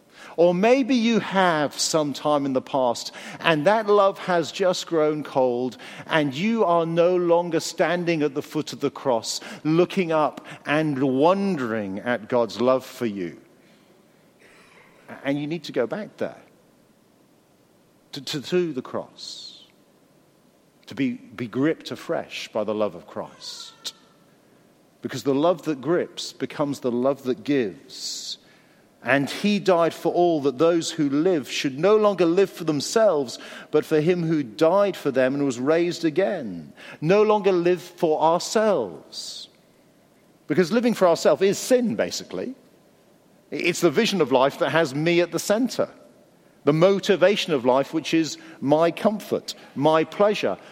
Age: 50-69